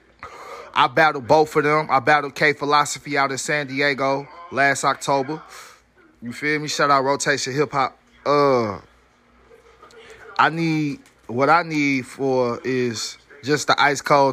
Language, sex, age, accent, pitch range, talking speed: English, male, 20-39, American, 130-150 Hz, 145 wpm